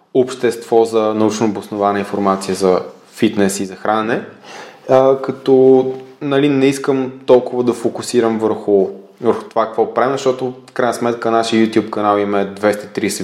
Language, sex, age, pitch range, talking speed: Bulgarian, male, 20-39, 100-125 Hz, 135 wpm